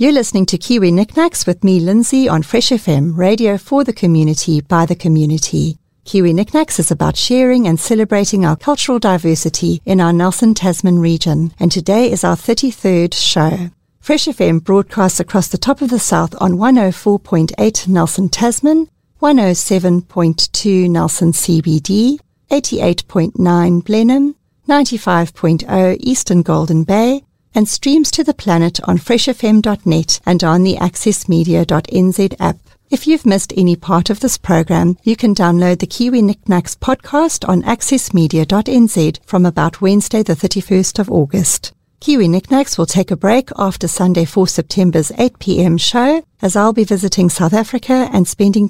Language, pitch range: English, 170-225 Hz